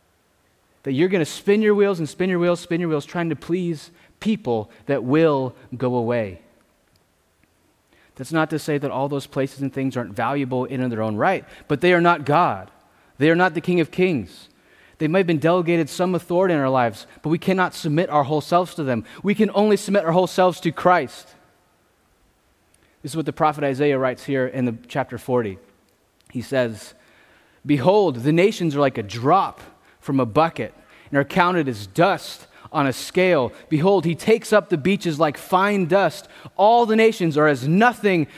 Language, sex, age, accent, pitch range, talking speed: English, male, 20-39, American, 140-210 Hz, 195 wpm